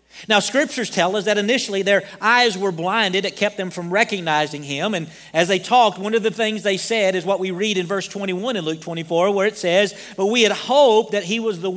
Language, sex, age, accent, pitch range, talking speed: English, male, 40-59, American, 185-220 Hz, 240 wpm